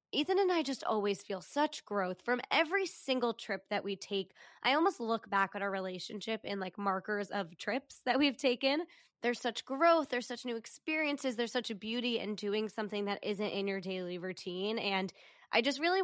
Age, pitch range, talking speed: 20-39, 200-255 Hz, 200 wpm